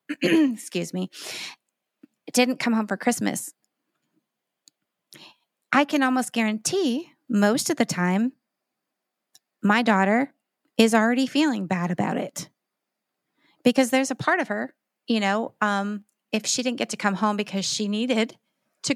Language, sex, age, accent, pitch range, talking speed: English, female, 30-49, American, 210-285 Hz, 140 wpm